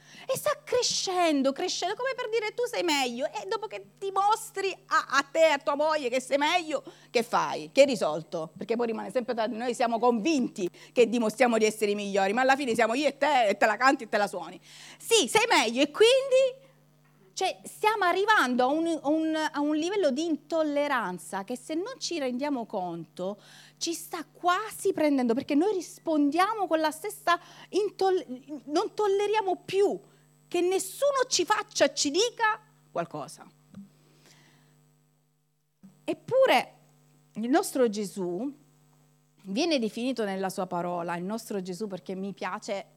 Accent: native